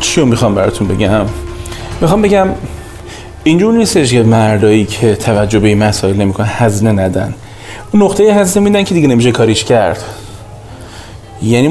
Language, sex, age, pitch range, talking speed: Persian, male, 30-49, 105-130 Hz, 145 wpm